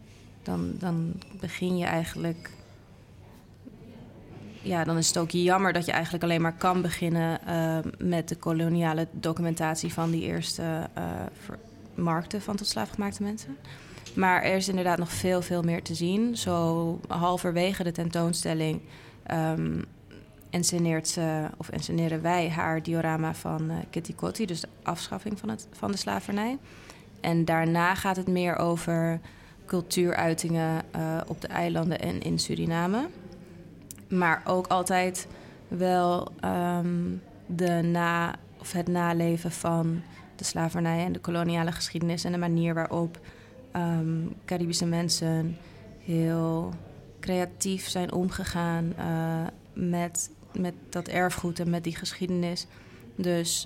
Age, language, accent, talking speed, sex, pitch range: 20-39, Dutch, Dutch, 130 wpm, female, 165-180 Hz